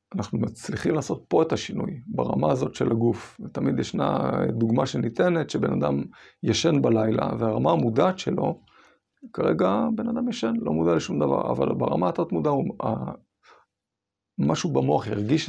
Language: Hebrew